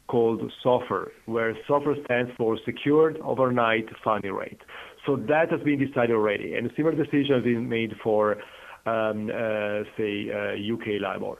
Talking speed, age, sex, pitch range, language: 160 wpm, 40-59, male, 115-145 Hz, English